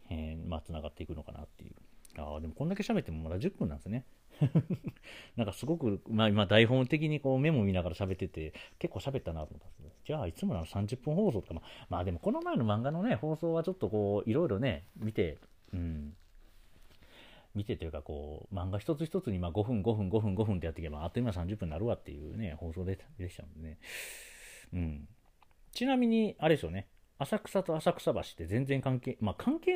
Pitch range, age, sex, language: 80-130 Hz, 40-59, male, Japanese